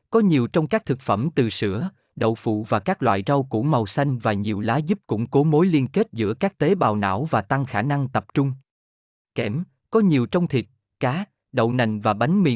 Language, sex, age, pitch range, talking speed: Vietnamese, male, 20-39, 110-160 Hz, 230 wpm